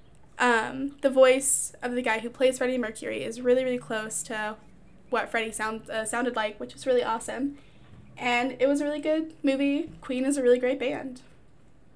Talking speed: 185 wpm